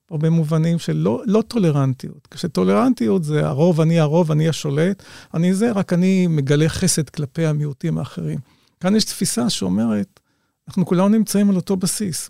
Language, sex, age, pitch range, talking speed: Hebrew, male, 50-69, 145-185 Hz, 155 wpm